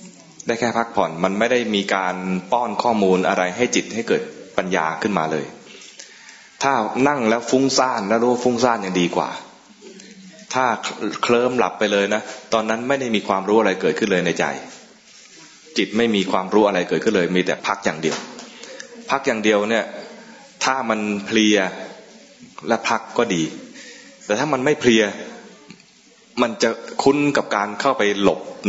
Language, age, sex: English, 20-39, male